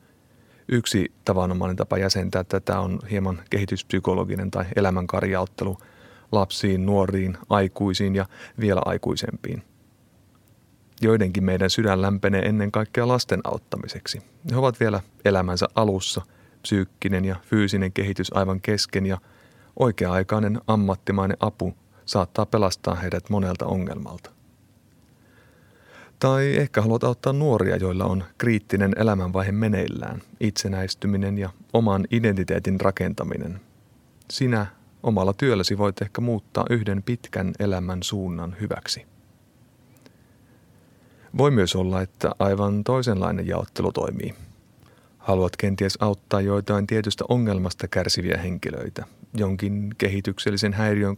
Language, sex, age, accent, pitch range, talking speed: Finnish, male, 30-49, native, 95-110 Hz, 105 wpm